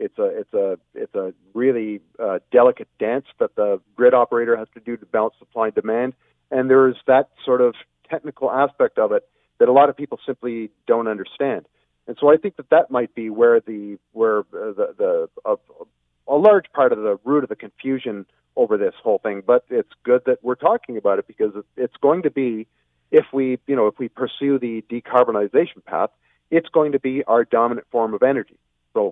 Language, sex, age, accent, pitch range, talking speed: English, male, 40-59, American, 115-175 Hz, 205 wpm